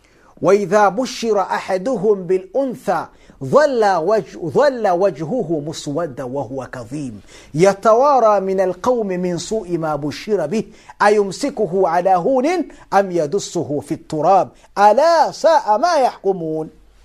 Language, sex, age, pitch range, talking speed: Swahili, male, 50-69, 170-230 Hz, 100 wpm